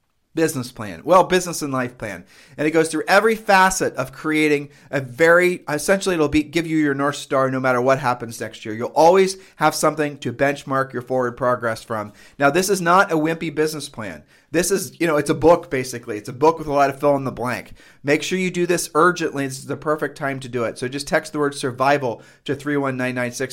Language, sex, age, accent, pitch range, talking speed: English, male, 40-59, American, 125-160 Hz, 230 wpm